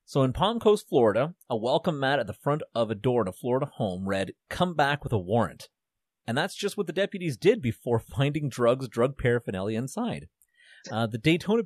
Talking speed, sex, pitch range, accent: 205 wpm, male, 110-165 Hz, American